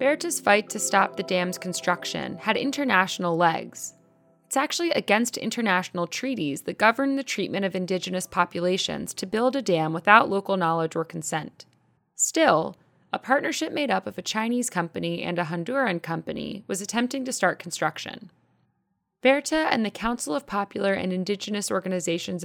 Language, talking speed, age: English, 155 wpm, 20-39